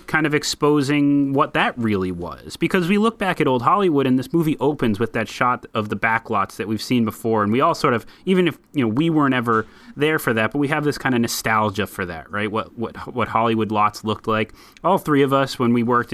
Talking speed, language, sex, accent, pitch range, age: 255 wpm, English, male, American, 110-140 Hz, 30-49